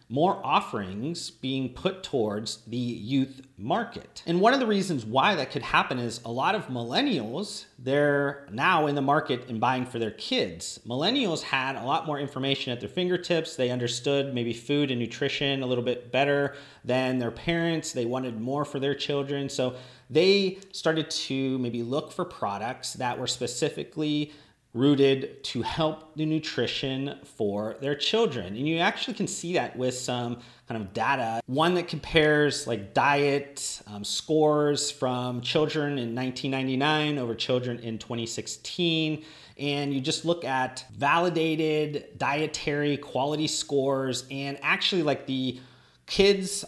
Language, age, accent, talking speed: English, 30-49, American, 155 wpm